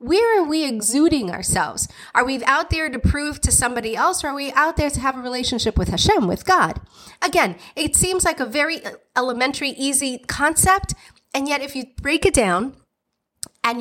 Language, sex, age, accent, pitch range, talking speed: English, female, 30-49, American, 200-270 Hz, 190 wpm